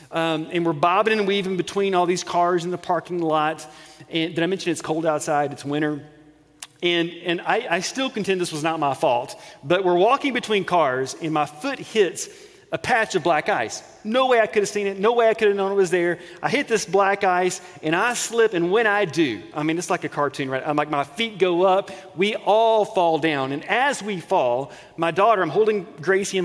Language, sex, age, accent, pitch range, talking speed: English, male, 40-59, American, 155-200 Hz, 235 wpm